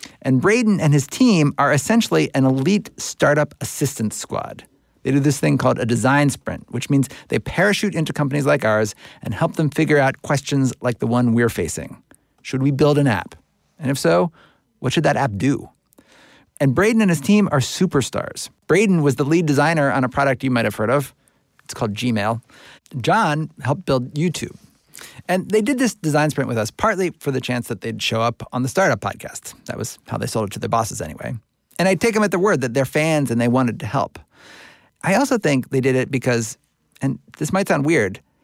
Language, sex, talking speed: English, male, 210 wpm